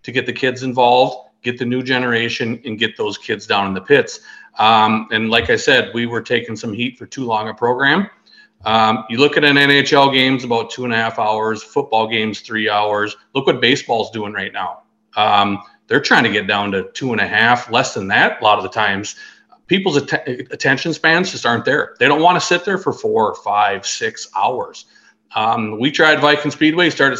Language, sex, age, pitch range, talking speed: English, male, 40-59, 110-140 Hz, 215 wpm